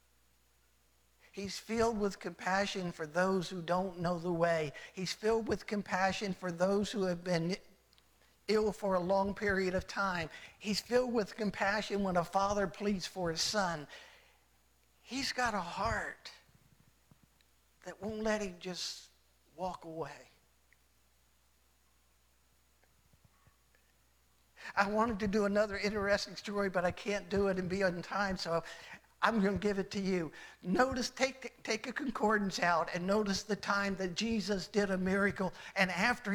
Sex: male